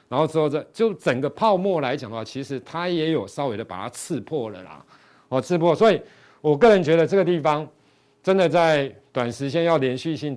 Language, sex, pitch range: Chinese, male, 125-165 Hz